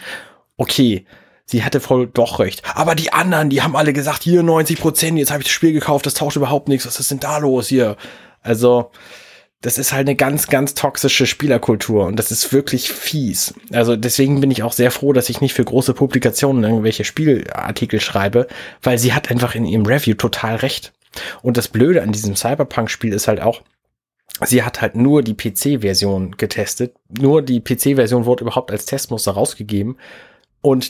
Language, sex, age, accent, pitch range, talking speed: German, male, 20-39, German, 110-140 Hz, 185 wpm